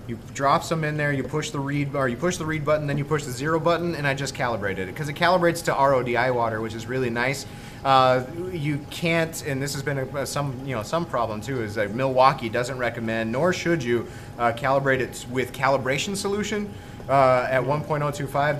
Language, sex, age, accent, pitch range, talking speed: English, male, 30-49, American, 120-145 Hz, 215 wpm